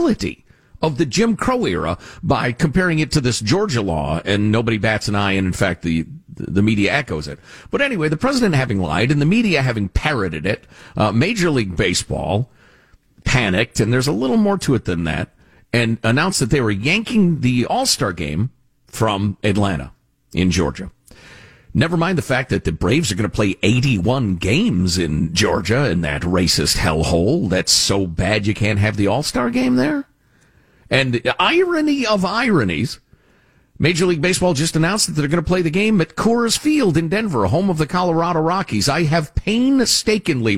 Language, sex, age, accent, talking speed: English, male, 50-69, American, 180 wpm